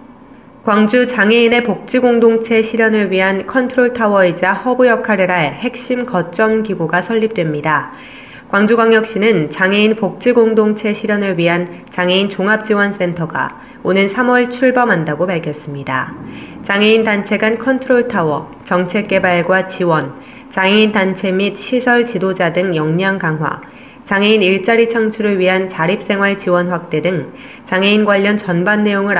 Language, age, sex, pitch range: Korean, 20-39, female, 180-225 Hz